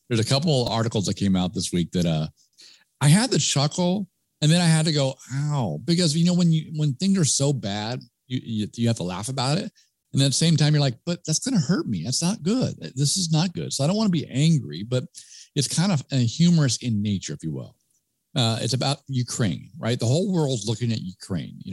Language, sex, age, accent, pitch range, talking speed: English, male, 50-69, American, 105-145 Hz, 250 wpm